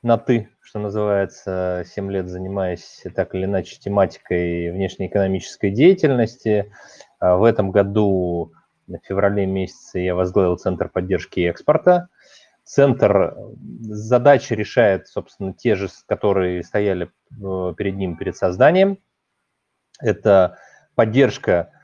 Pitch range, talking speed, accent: 95-135 Hz, 105 wpm, native